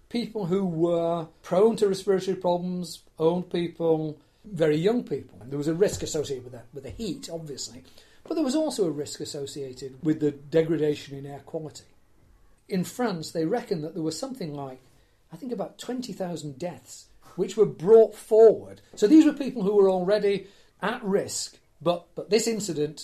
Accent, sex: British, male